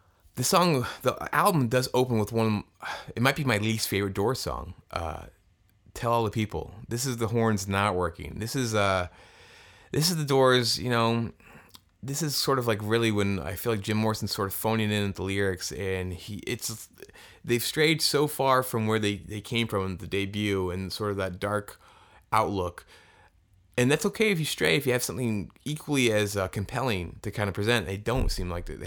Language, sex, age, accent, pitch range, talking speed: English, male, 20-39, American, 95-125 Hz, 210 wpm